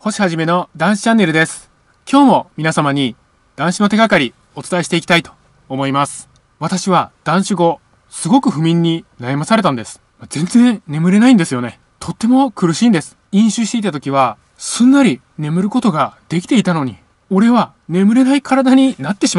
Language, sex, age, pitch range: Japanese, male, 20-39, 150-220 Hz